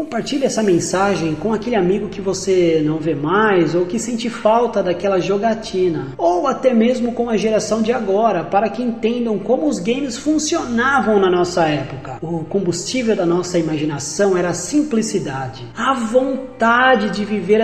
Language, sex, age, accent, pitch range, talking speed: Portuguese, male, 20-39, Brazilian, 180-235 Hz, 160 wpm